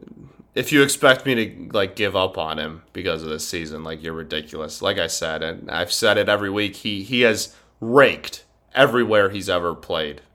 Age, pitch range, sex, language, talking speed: 20-39, 85-135 Hz, male, English, 195 wpm